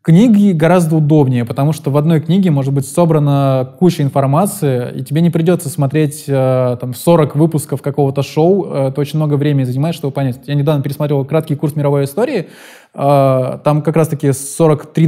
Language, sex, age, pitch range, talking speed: Russian, male, 20-39, 140-170 Hz, 170 wpm